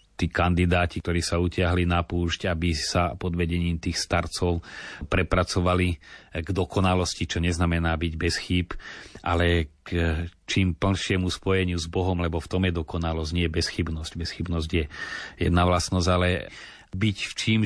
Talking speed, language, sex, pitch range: 145 wpm, Slovak, male, 85-95 Hz